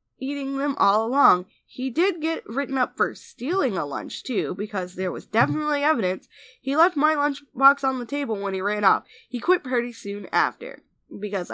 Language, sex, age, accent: English, female, 10-29, American